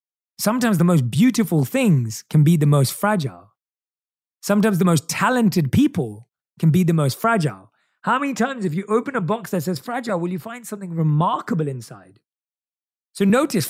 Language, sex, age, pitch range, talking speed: English, male, 30-49, 150-205 Hz, 170 wpm